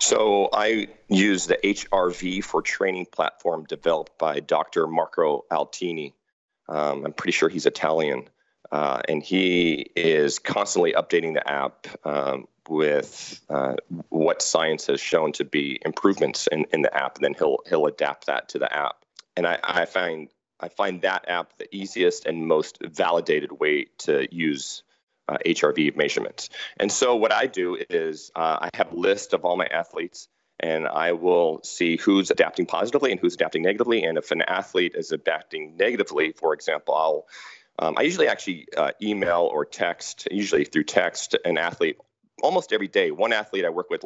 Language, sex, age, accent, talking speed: English, male, 40-59, American, 170 wpm